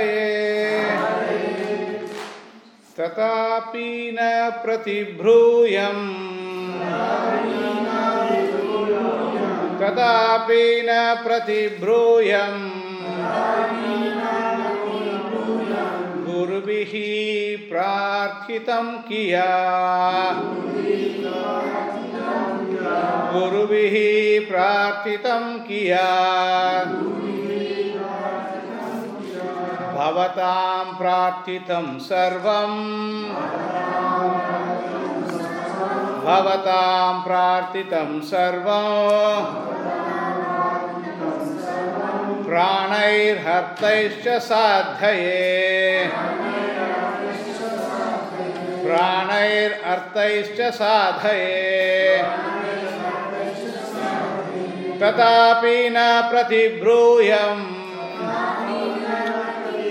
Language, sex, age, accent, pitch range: English, male, 50-69, Indian, 185-220 Hz